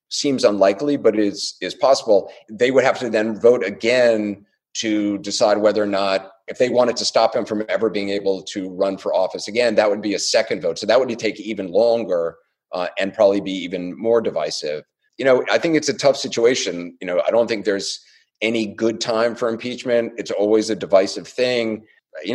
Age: 30-49